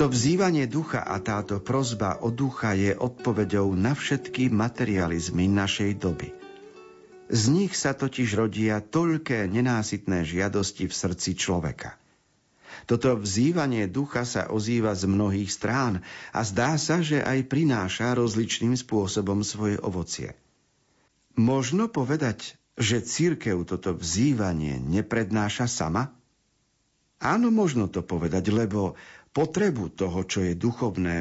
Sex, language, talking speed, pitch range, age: male, Slovak, 120 wpm, 100-130 Hz, 50-69